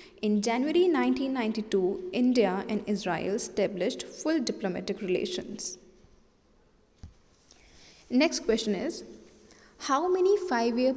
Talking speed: 90 wpm